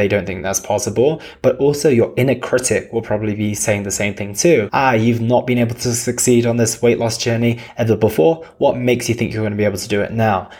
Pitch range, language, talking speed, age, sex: 105-125 Hz, English, 255 wpm, 20-39, male